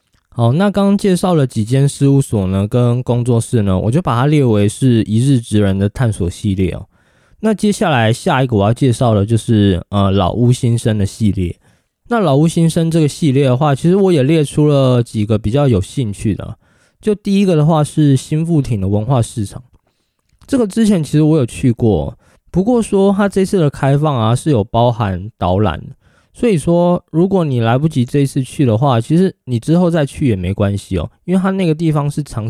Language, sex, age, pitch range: Chinese, male, 20-39, 110-160 Hz